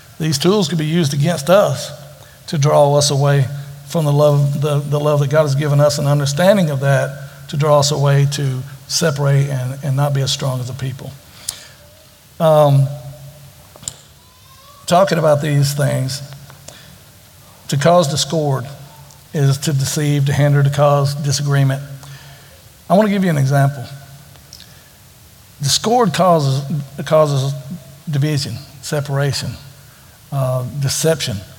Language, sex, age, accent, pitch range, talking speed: English, male, 60-79, American, 135-160 Hz, 135 wpm